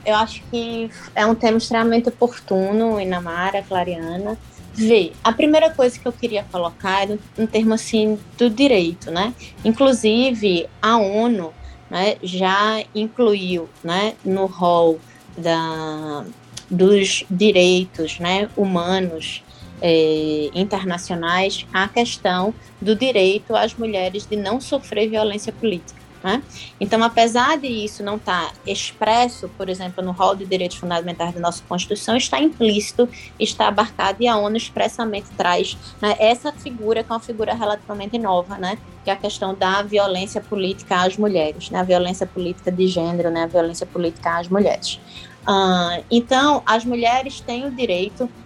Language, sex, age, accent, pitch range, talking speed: Portuguese, female, 20-39, Brazilian, 180-225 Hz, 140 wpm